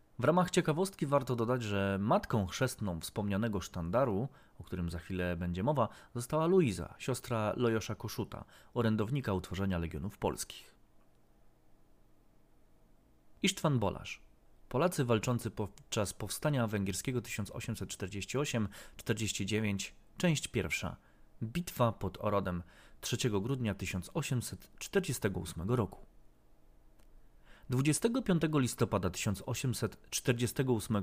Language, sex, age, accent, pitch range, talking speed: Polish, male, 20-39, native, 95-130 Hz, 85 wpm